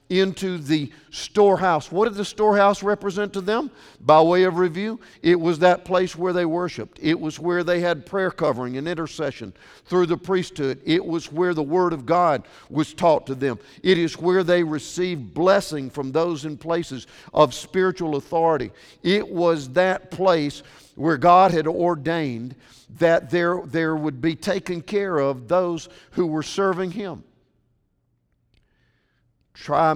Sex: male